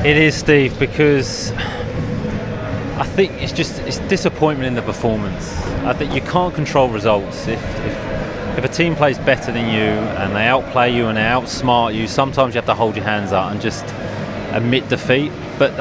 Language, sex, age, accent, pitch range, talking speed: English, male, 30-49, British, 115-150 Hz, 185 wpm